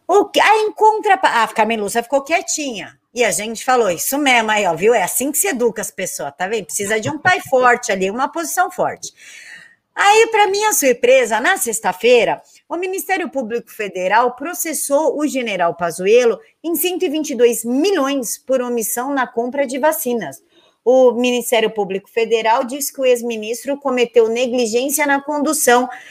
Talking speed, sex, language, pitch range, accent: 160 wpm, female, Portuguese, 230-295 Hz, Brazilian